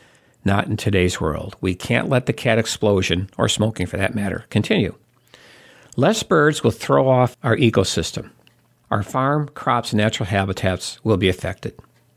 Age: 50-69